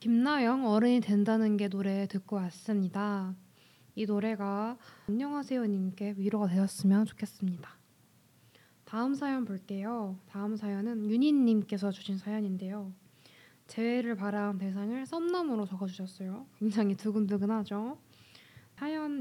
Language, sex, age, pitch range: Korean, female, 20-39, 200-240 Hz